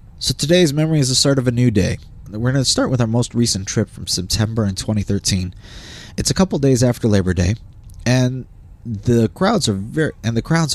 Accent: American